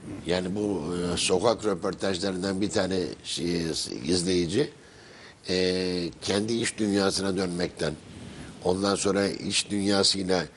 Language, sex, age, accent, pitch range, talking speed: Turkish, male, 60-79, native, 95-110 Hz, 100 wpm